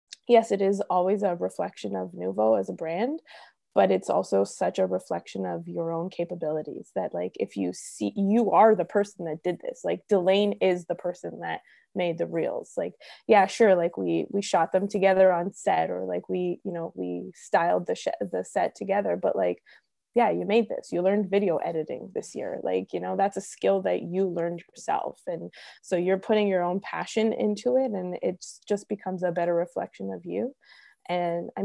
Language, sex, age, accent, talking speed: English, female, 20-39, American, 205 wpm